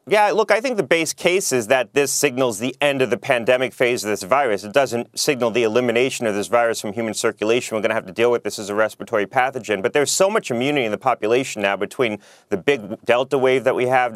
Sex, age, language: male, 30-49, English